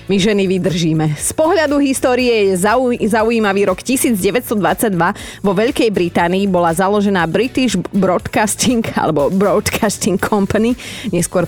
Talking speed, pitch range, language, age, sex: 110 wpm, 170-220 Hz, Slovak, 30-49, female